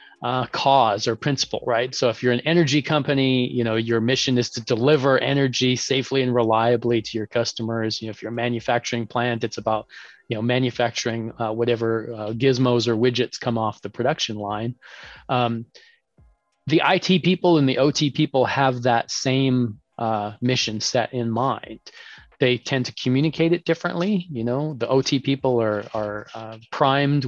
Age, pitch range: 30-49, 115-135 Hz